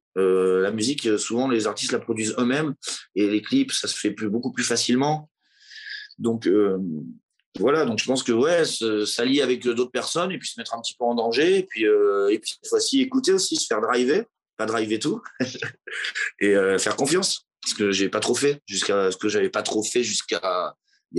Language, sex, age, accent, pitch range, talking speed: French, male, 30-49, French, 105-140 Hz, 210 wpm